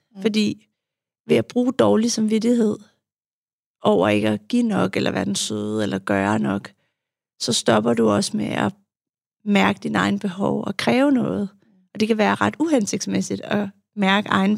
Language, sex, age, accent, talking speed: Danish, female, 40-59, native, 165 wpm